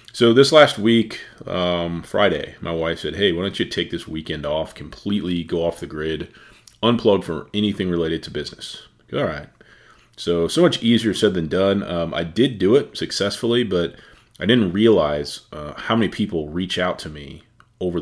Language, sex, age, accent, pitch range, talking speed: English, male, 30-49, American, 80-105 Hz, 185 wpm